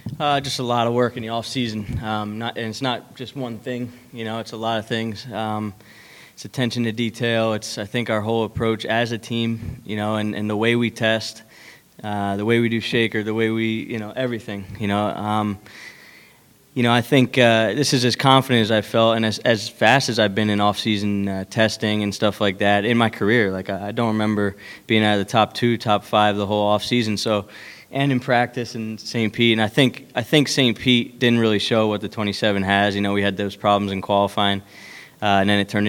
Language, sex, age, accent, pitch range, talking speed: English, male, 20-39, American, 105-120 Hz, 250 wpm